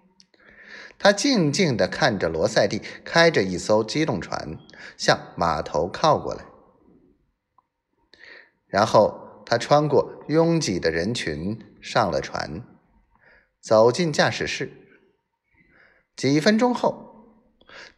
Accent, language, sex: native, Chinese, male